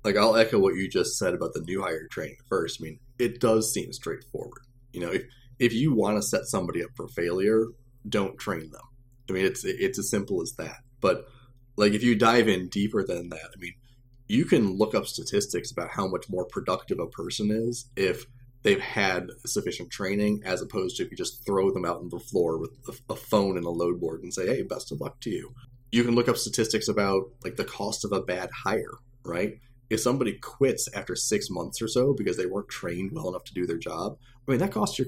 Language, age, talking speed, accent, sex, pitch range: English, 30-49, 230 wpm, American, male, 105-125 Hz